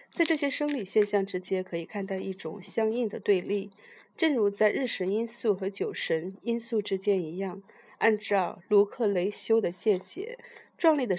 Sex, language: female, Chinese